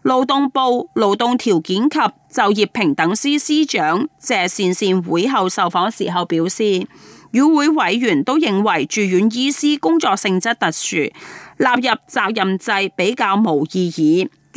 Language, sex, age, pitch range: Chinese, female, 30-49, 185-265 Hz